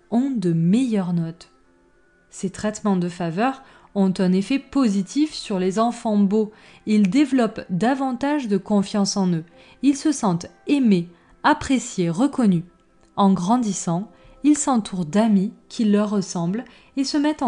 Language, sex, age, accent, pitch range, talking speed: French, female, 20-39, French, 180-255 Hz, 135 wpm